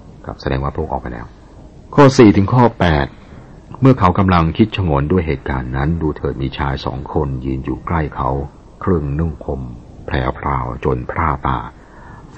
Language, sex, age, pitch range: Thai, male, 60-79, 65-85 Hz